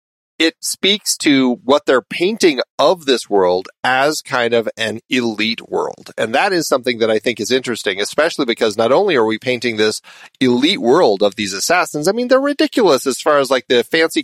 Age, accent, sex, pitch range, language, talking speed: 40-59, American, male, 110-145 Hz, English, 200 wpm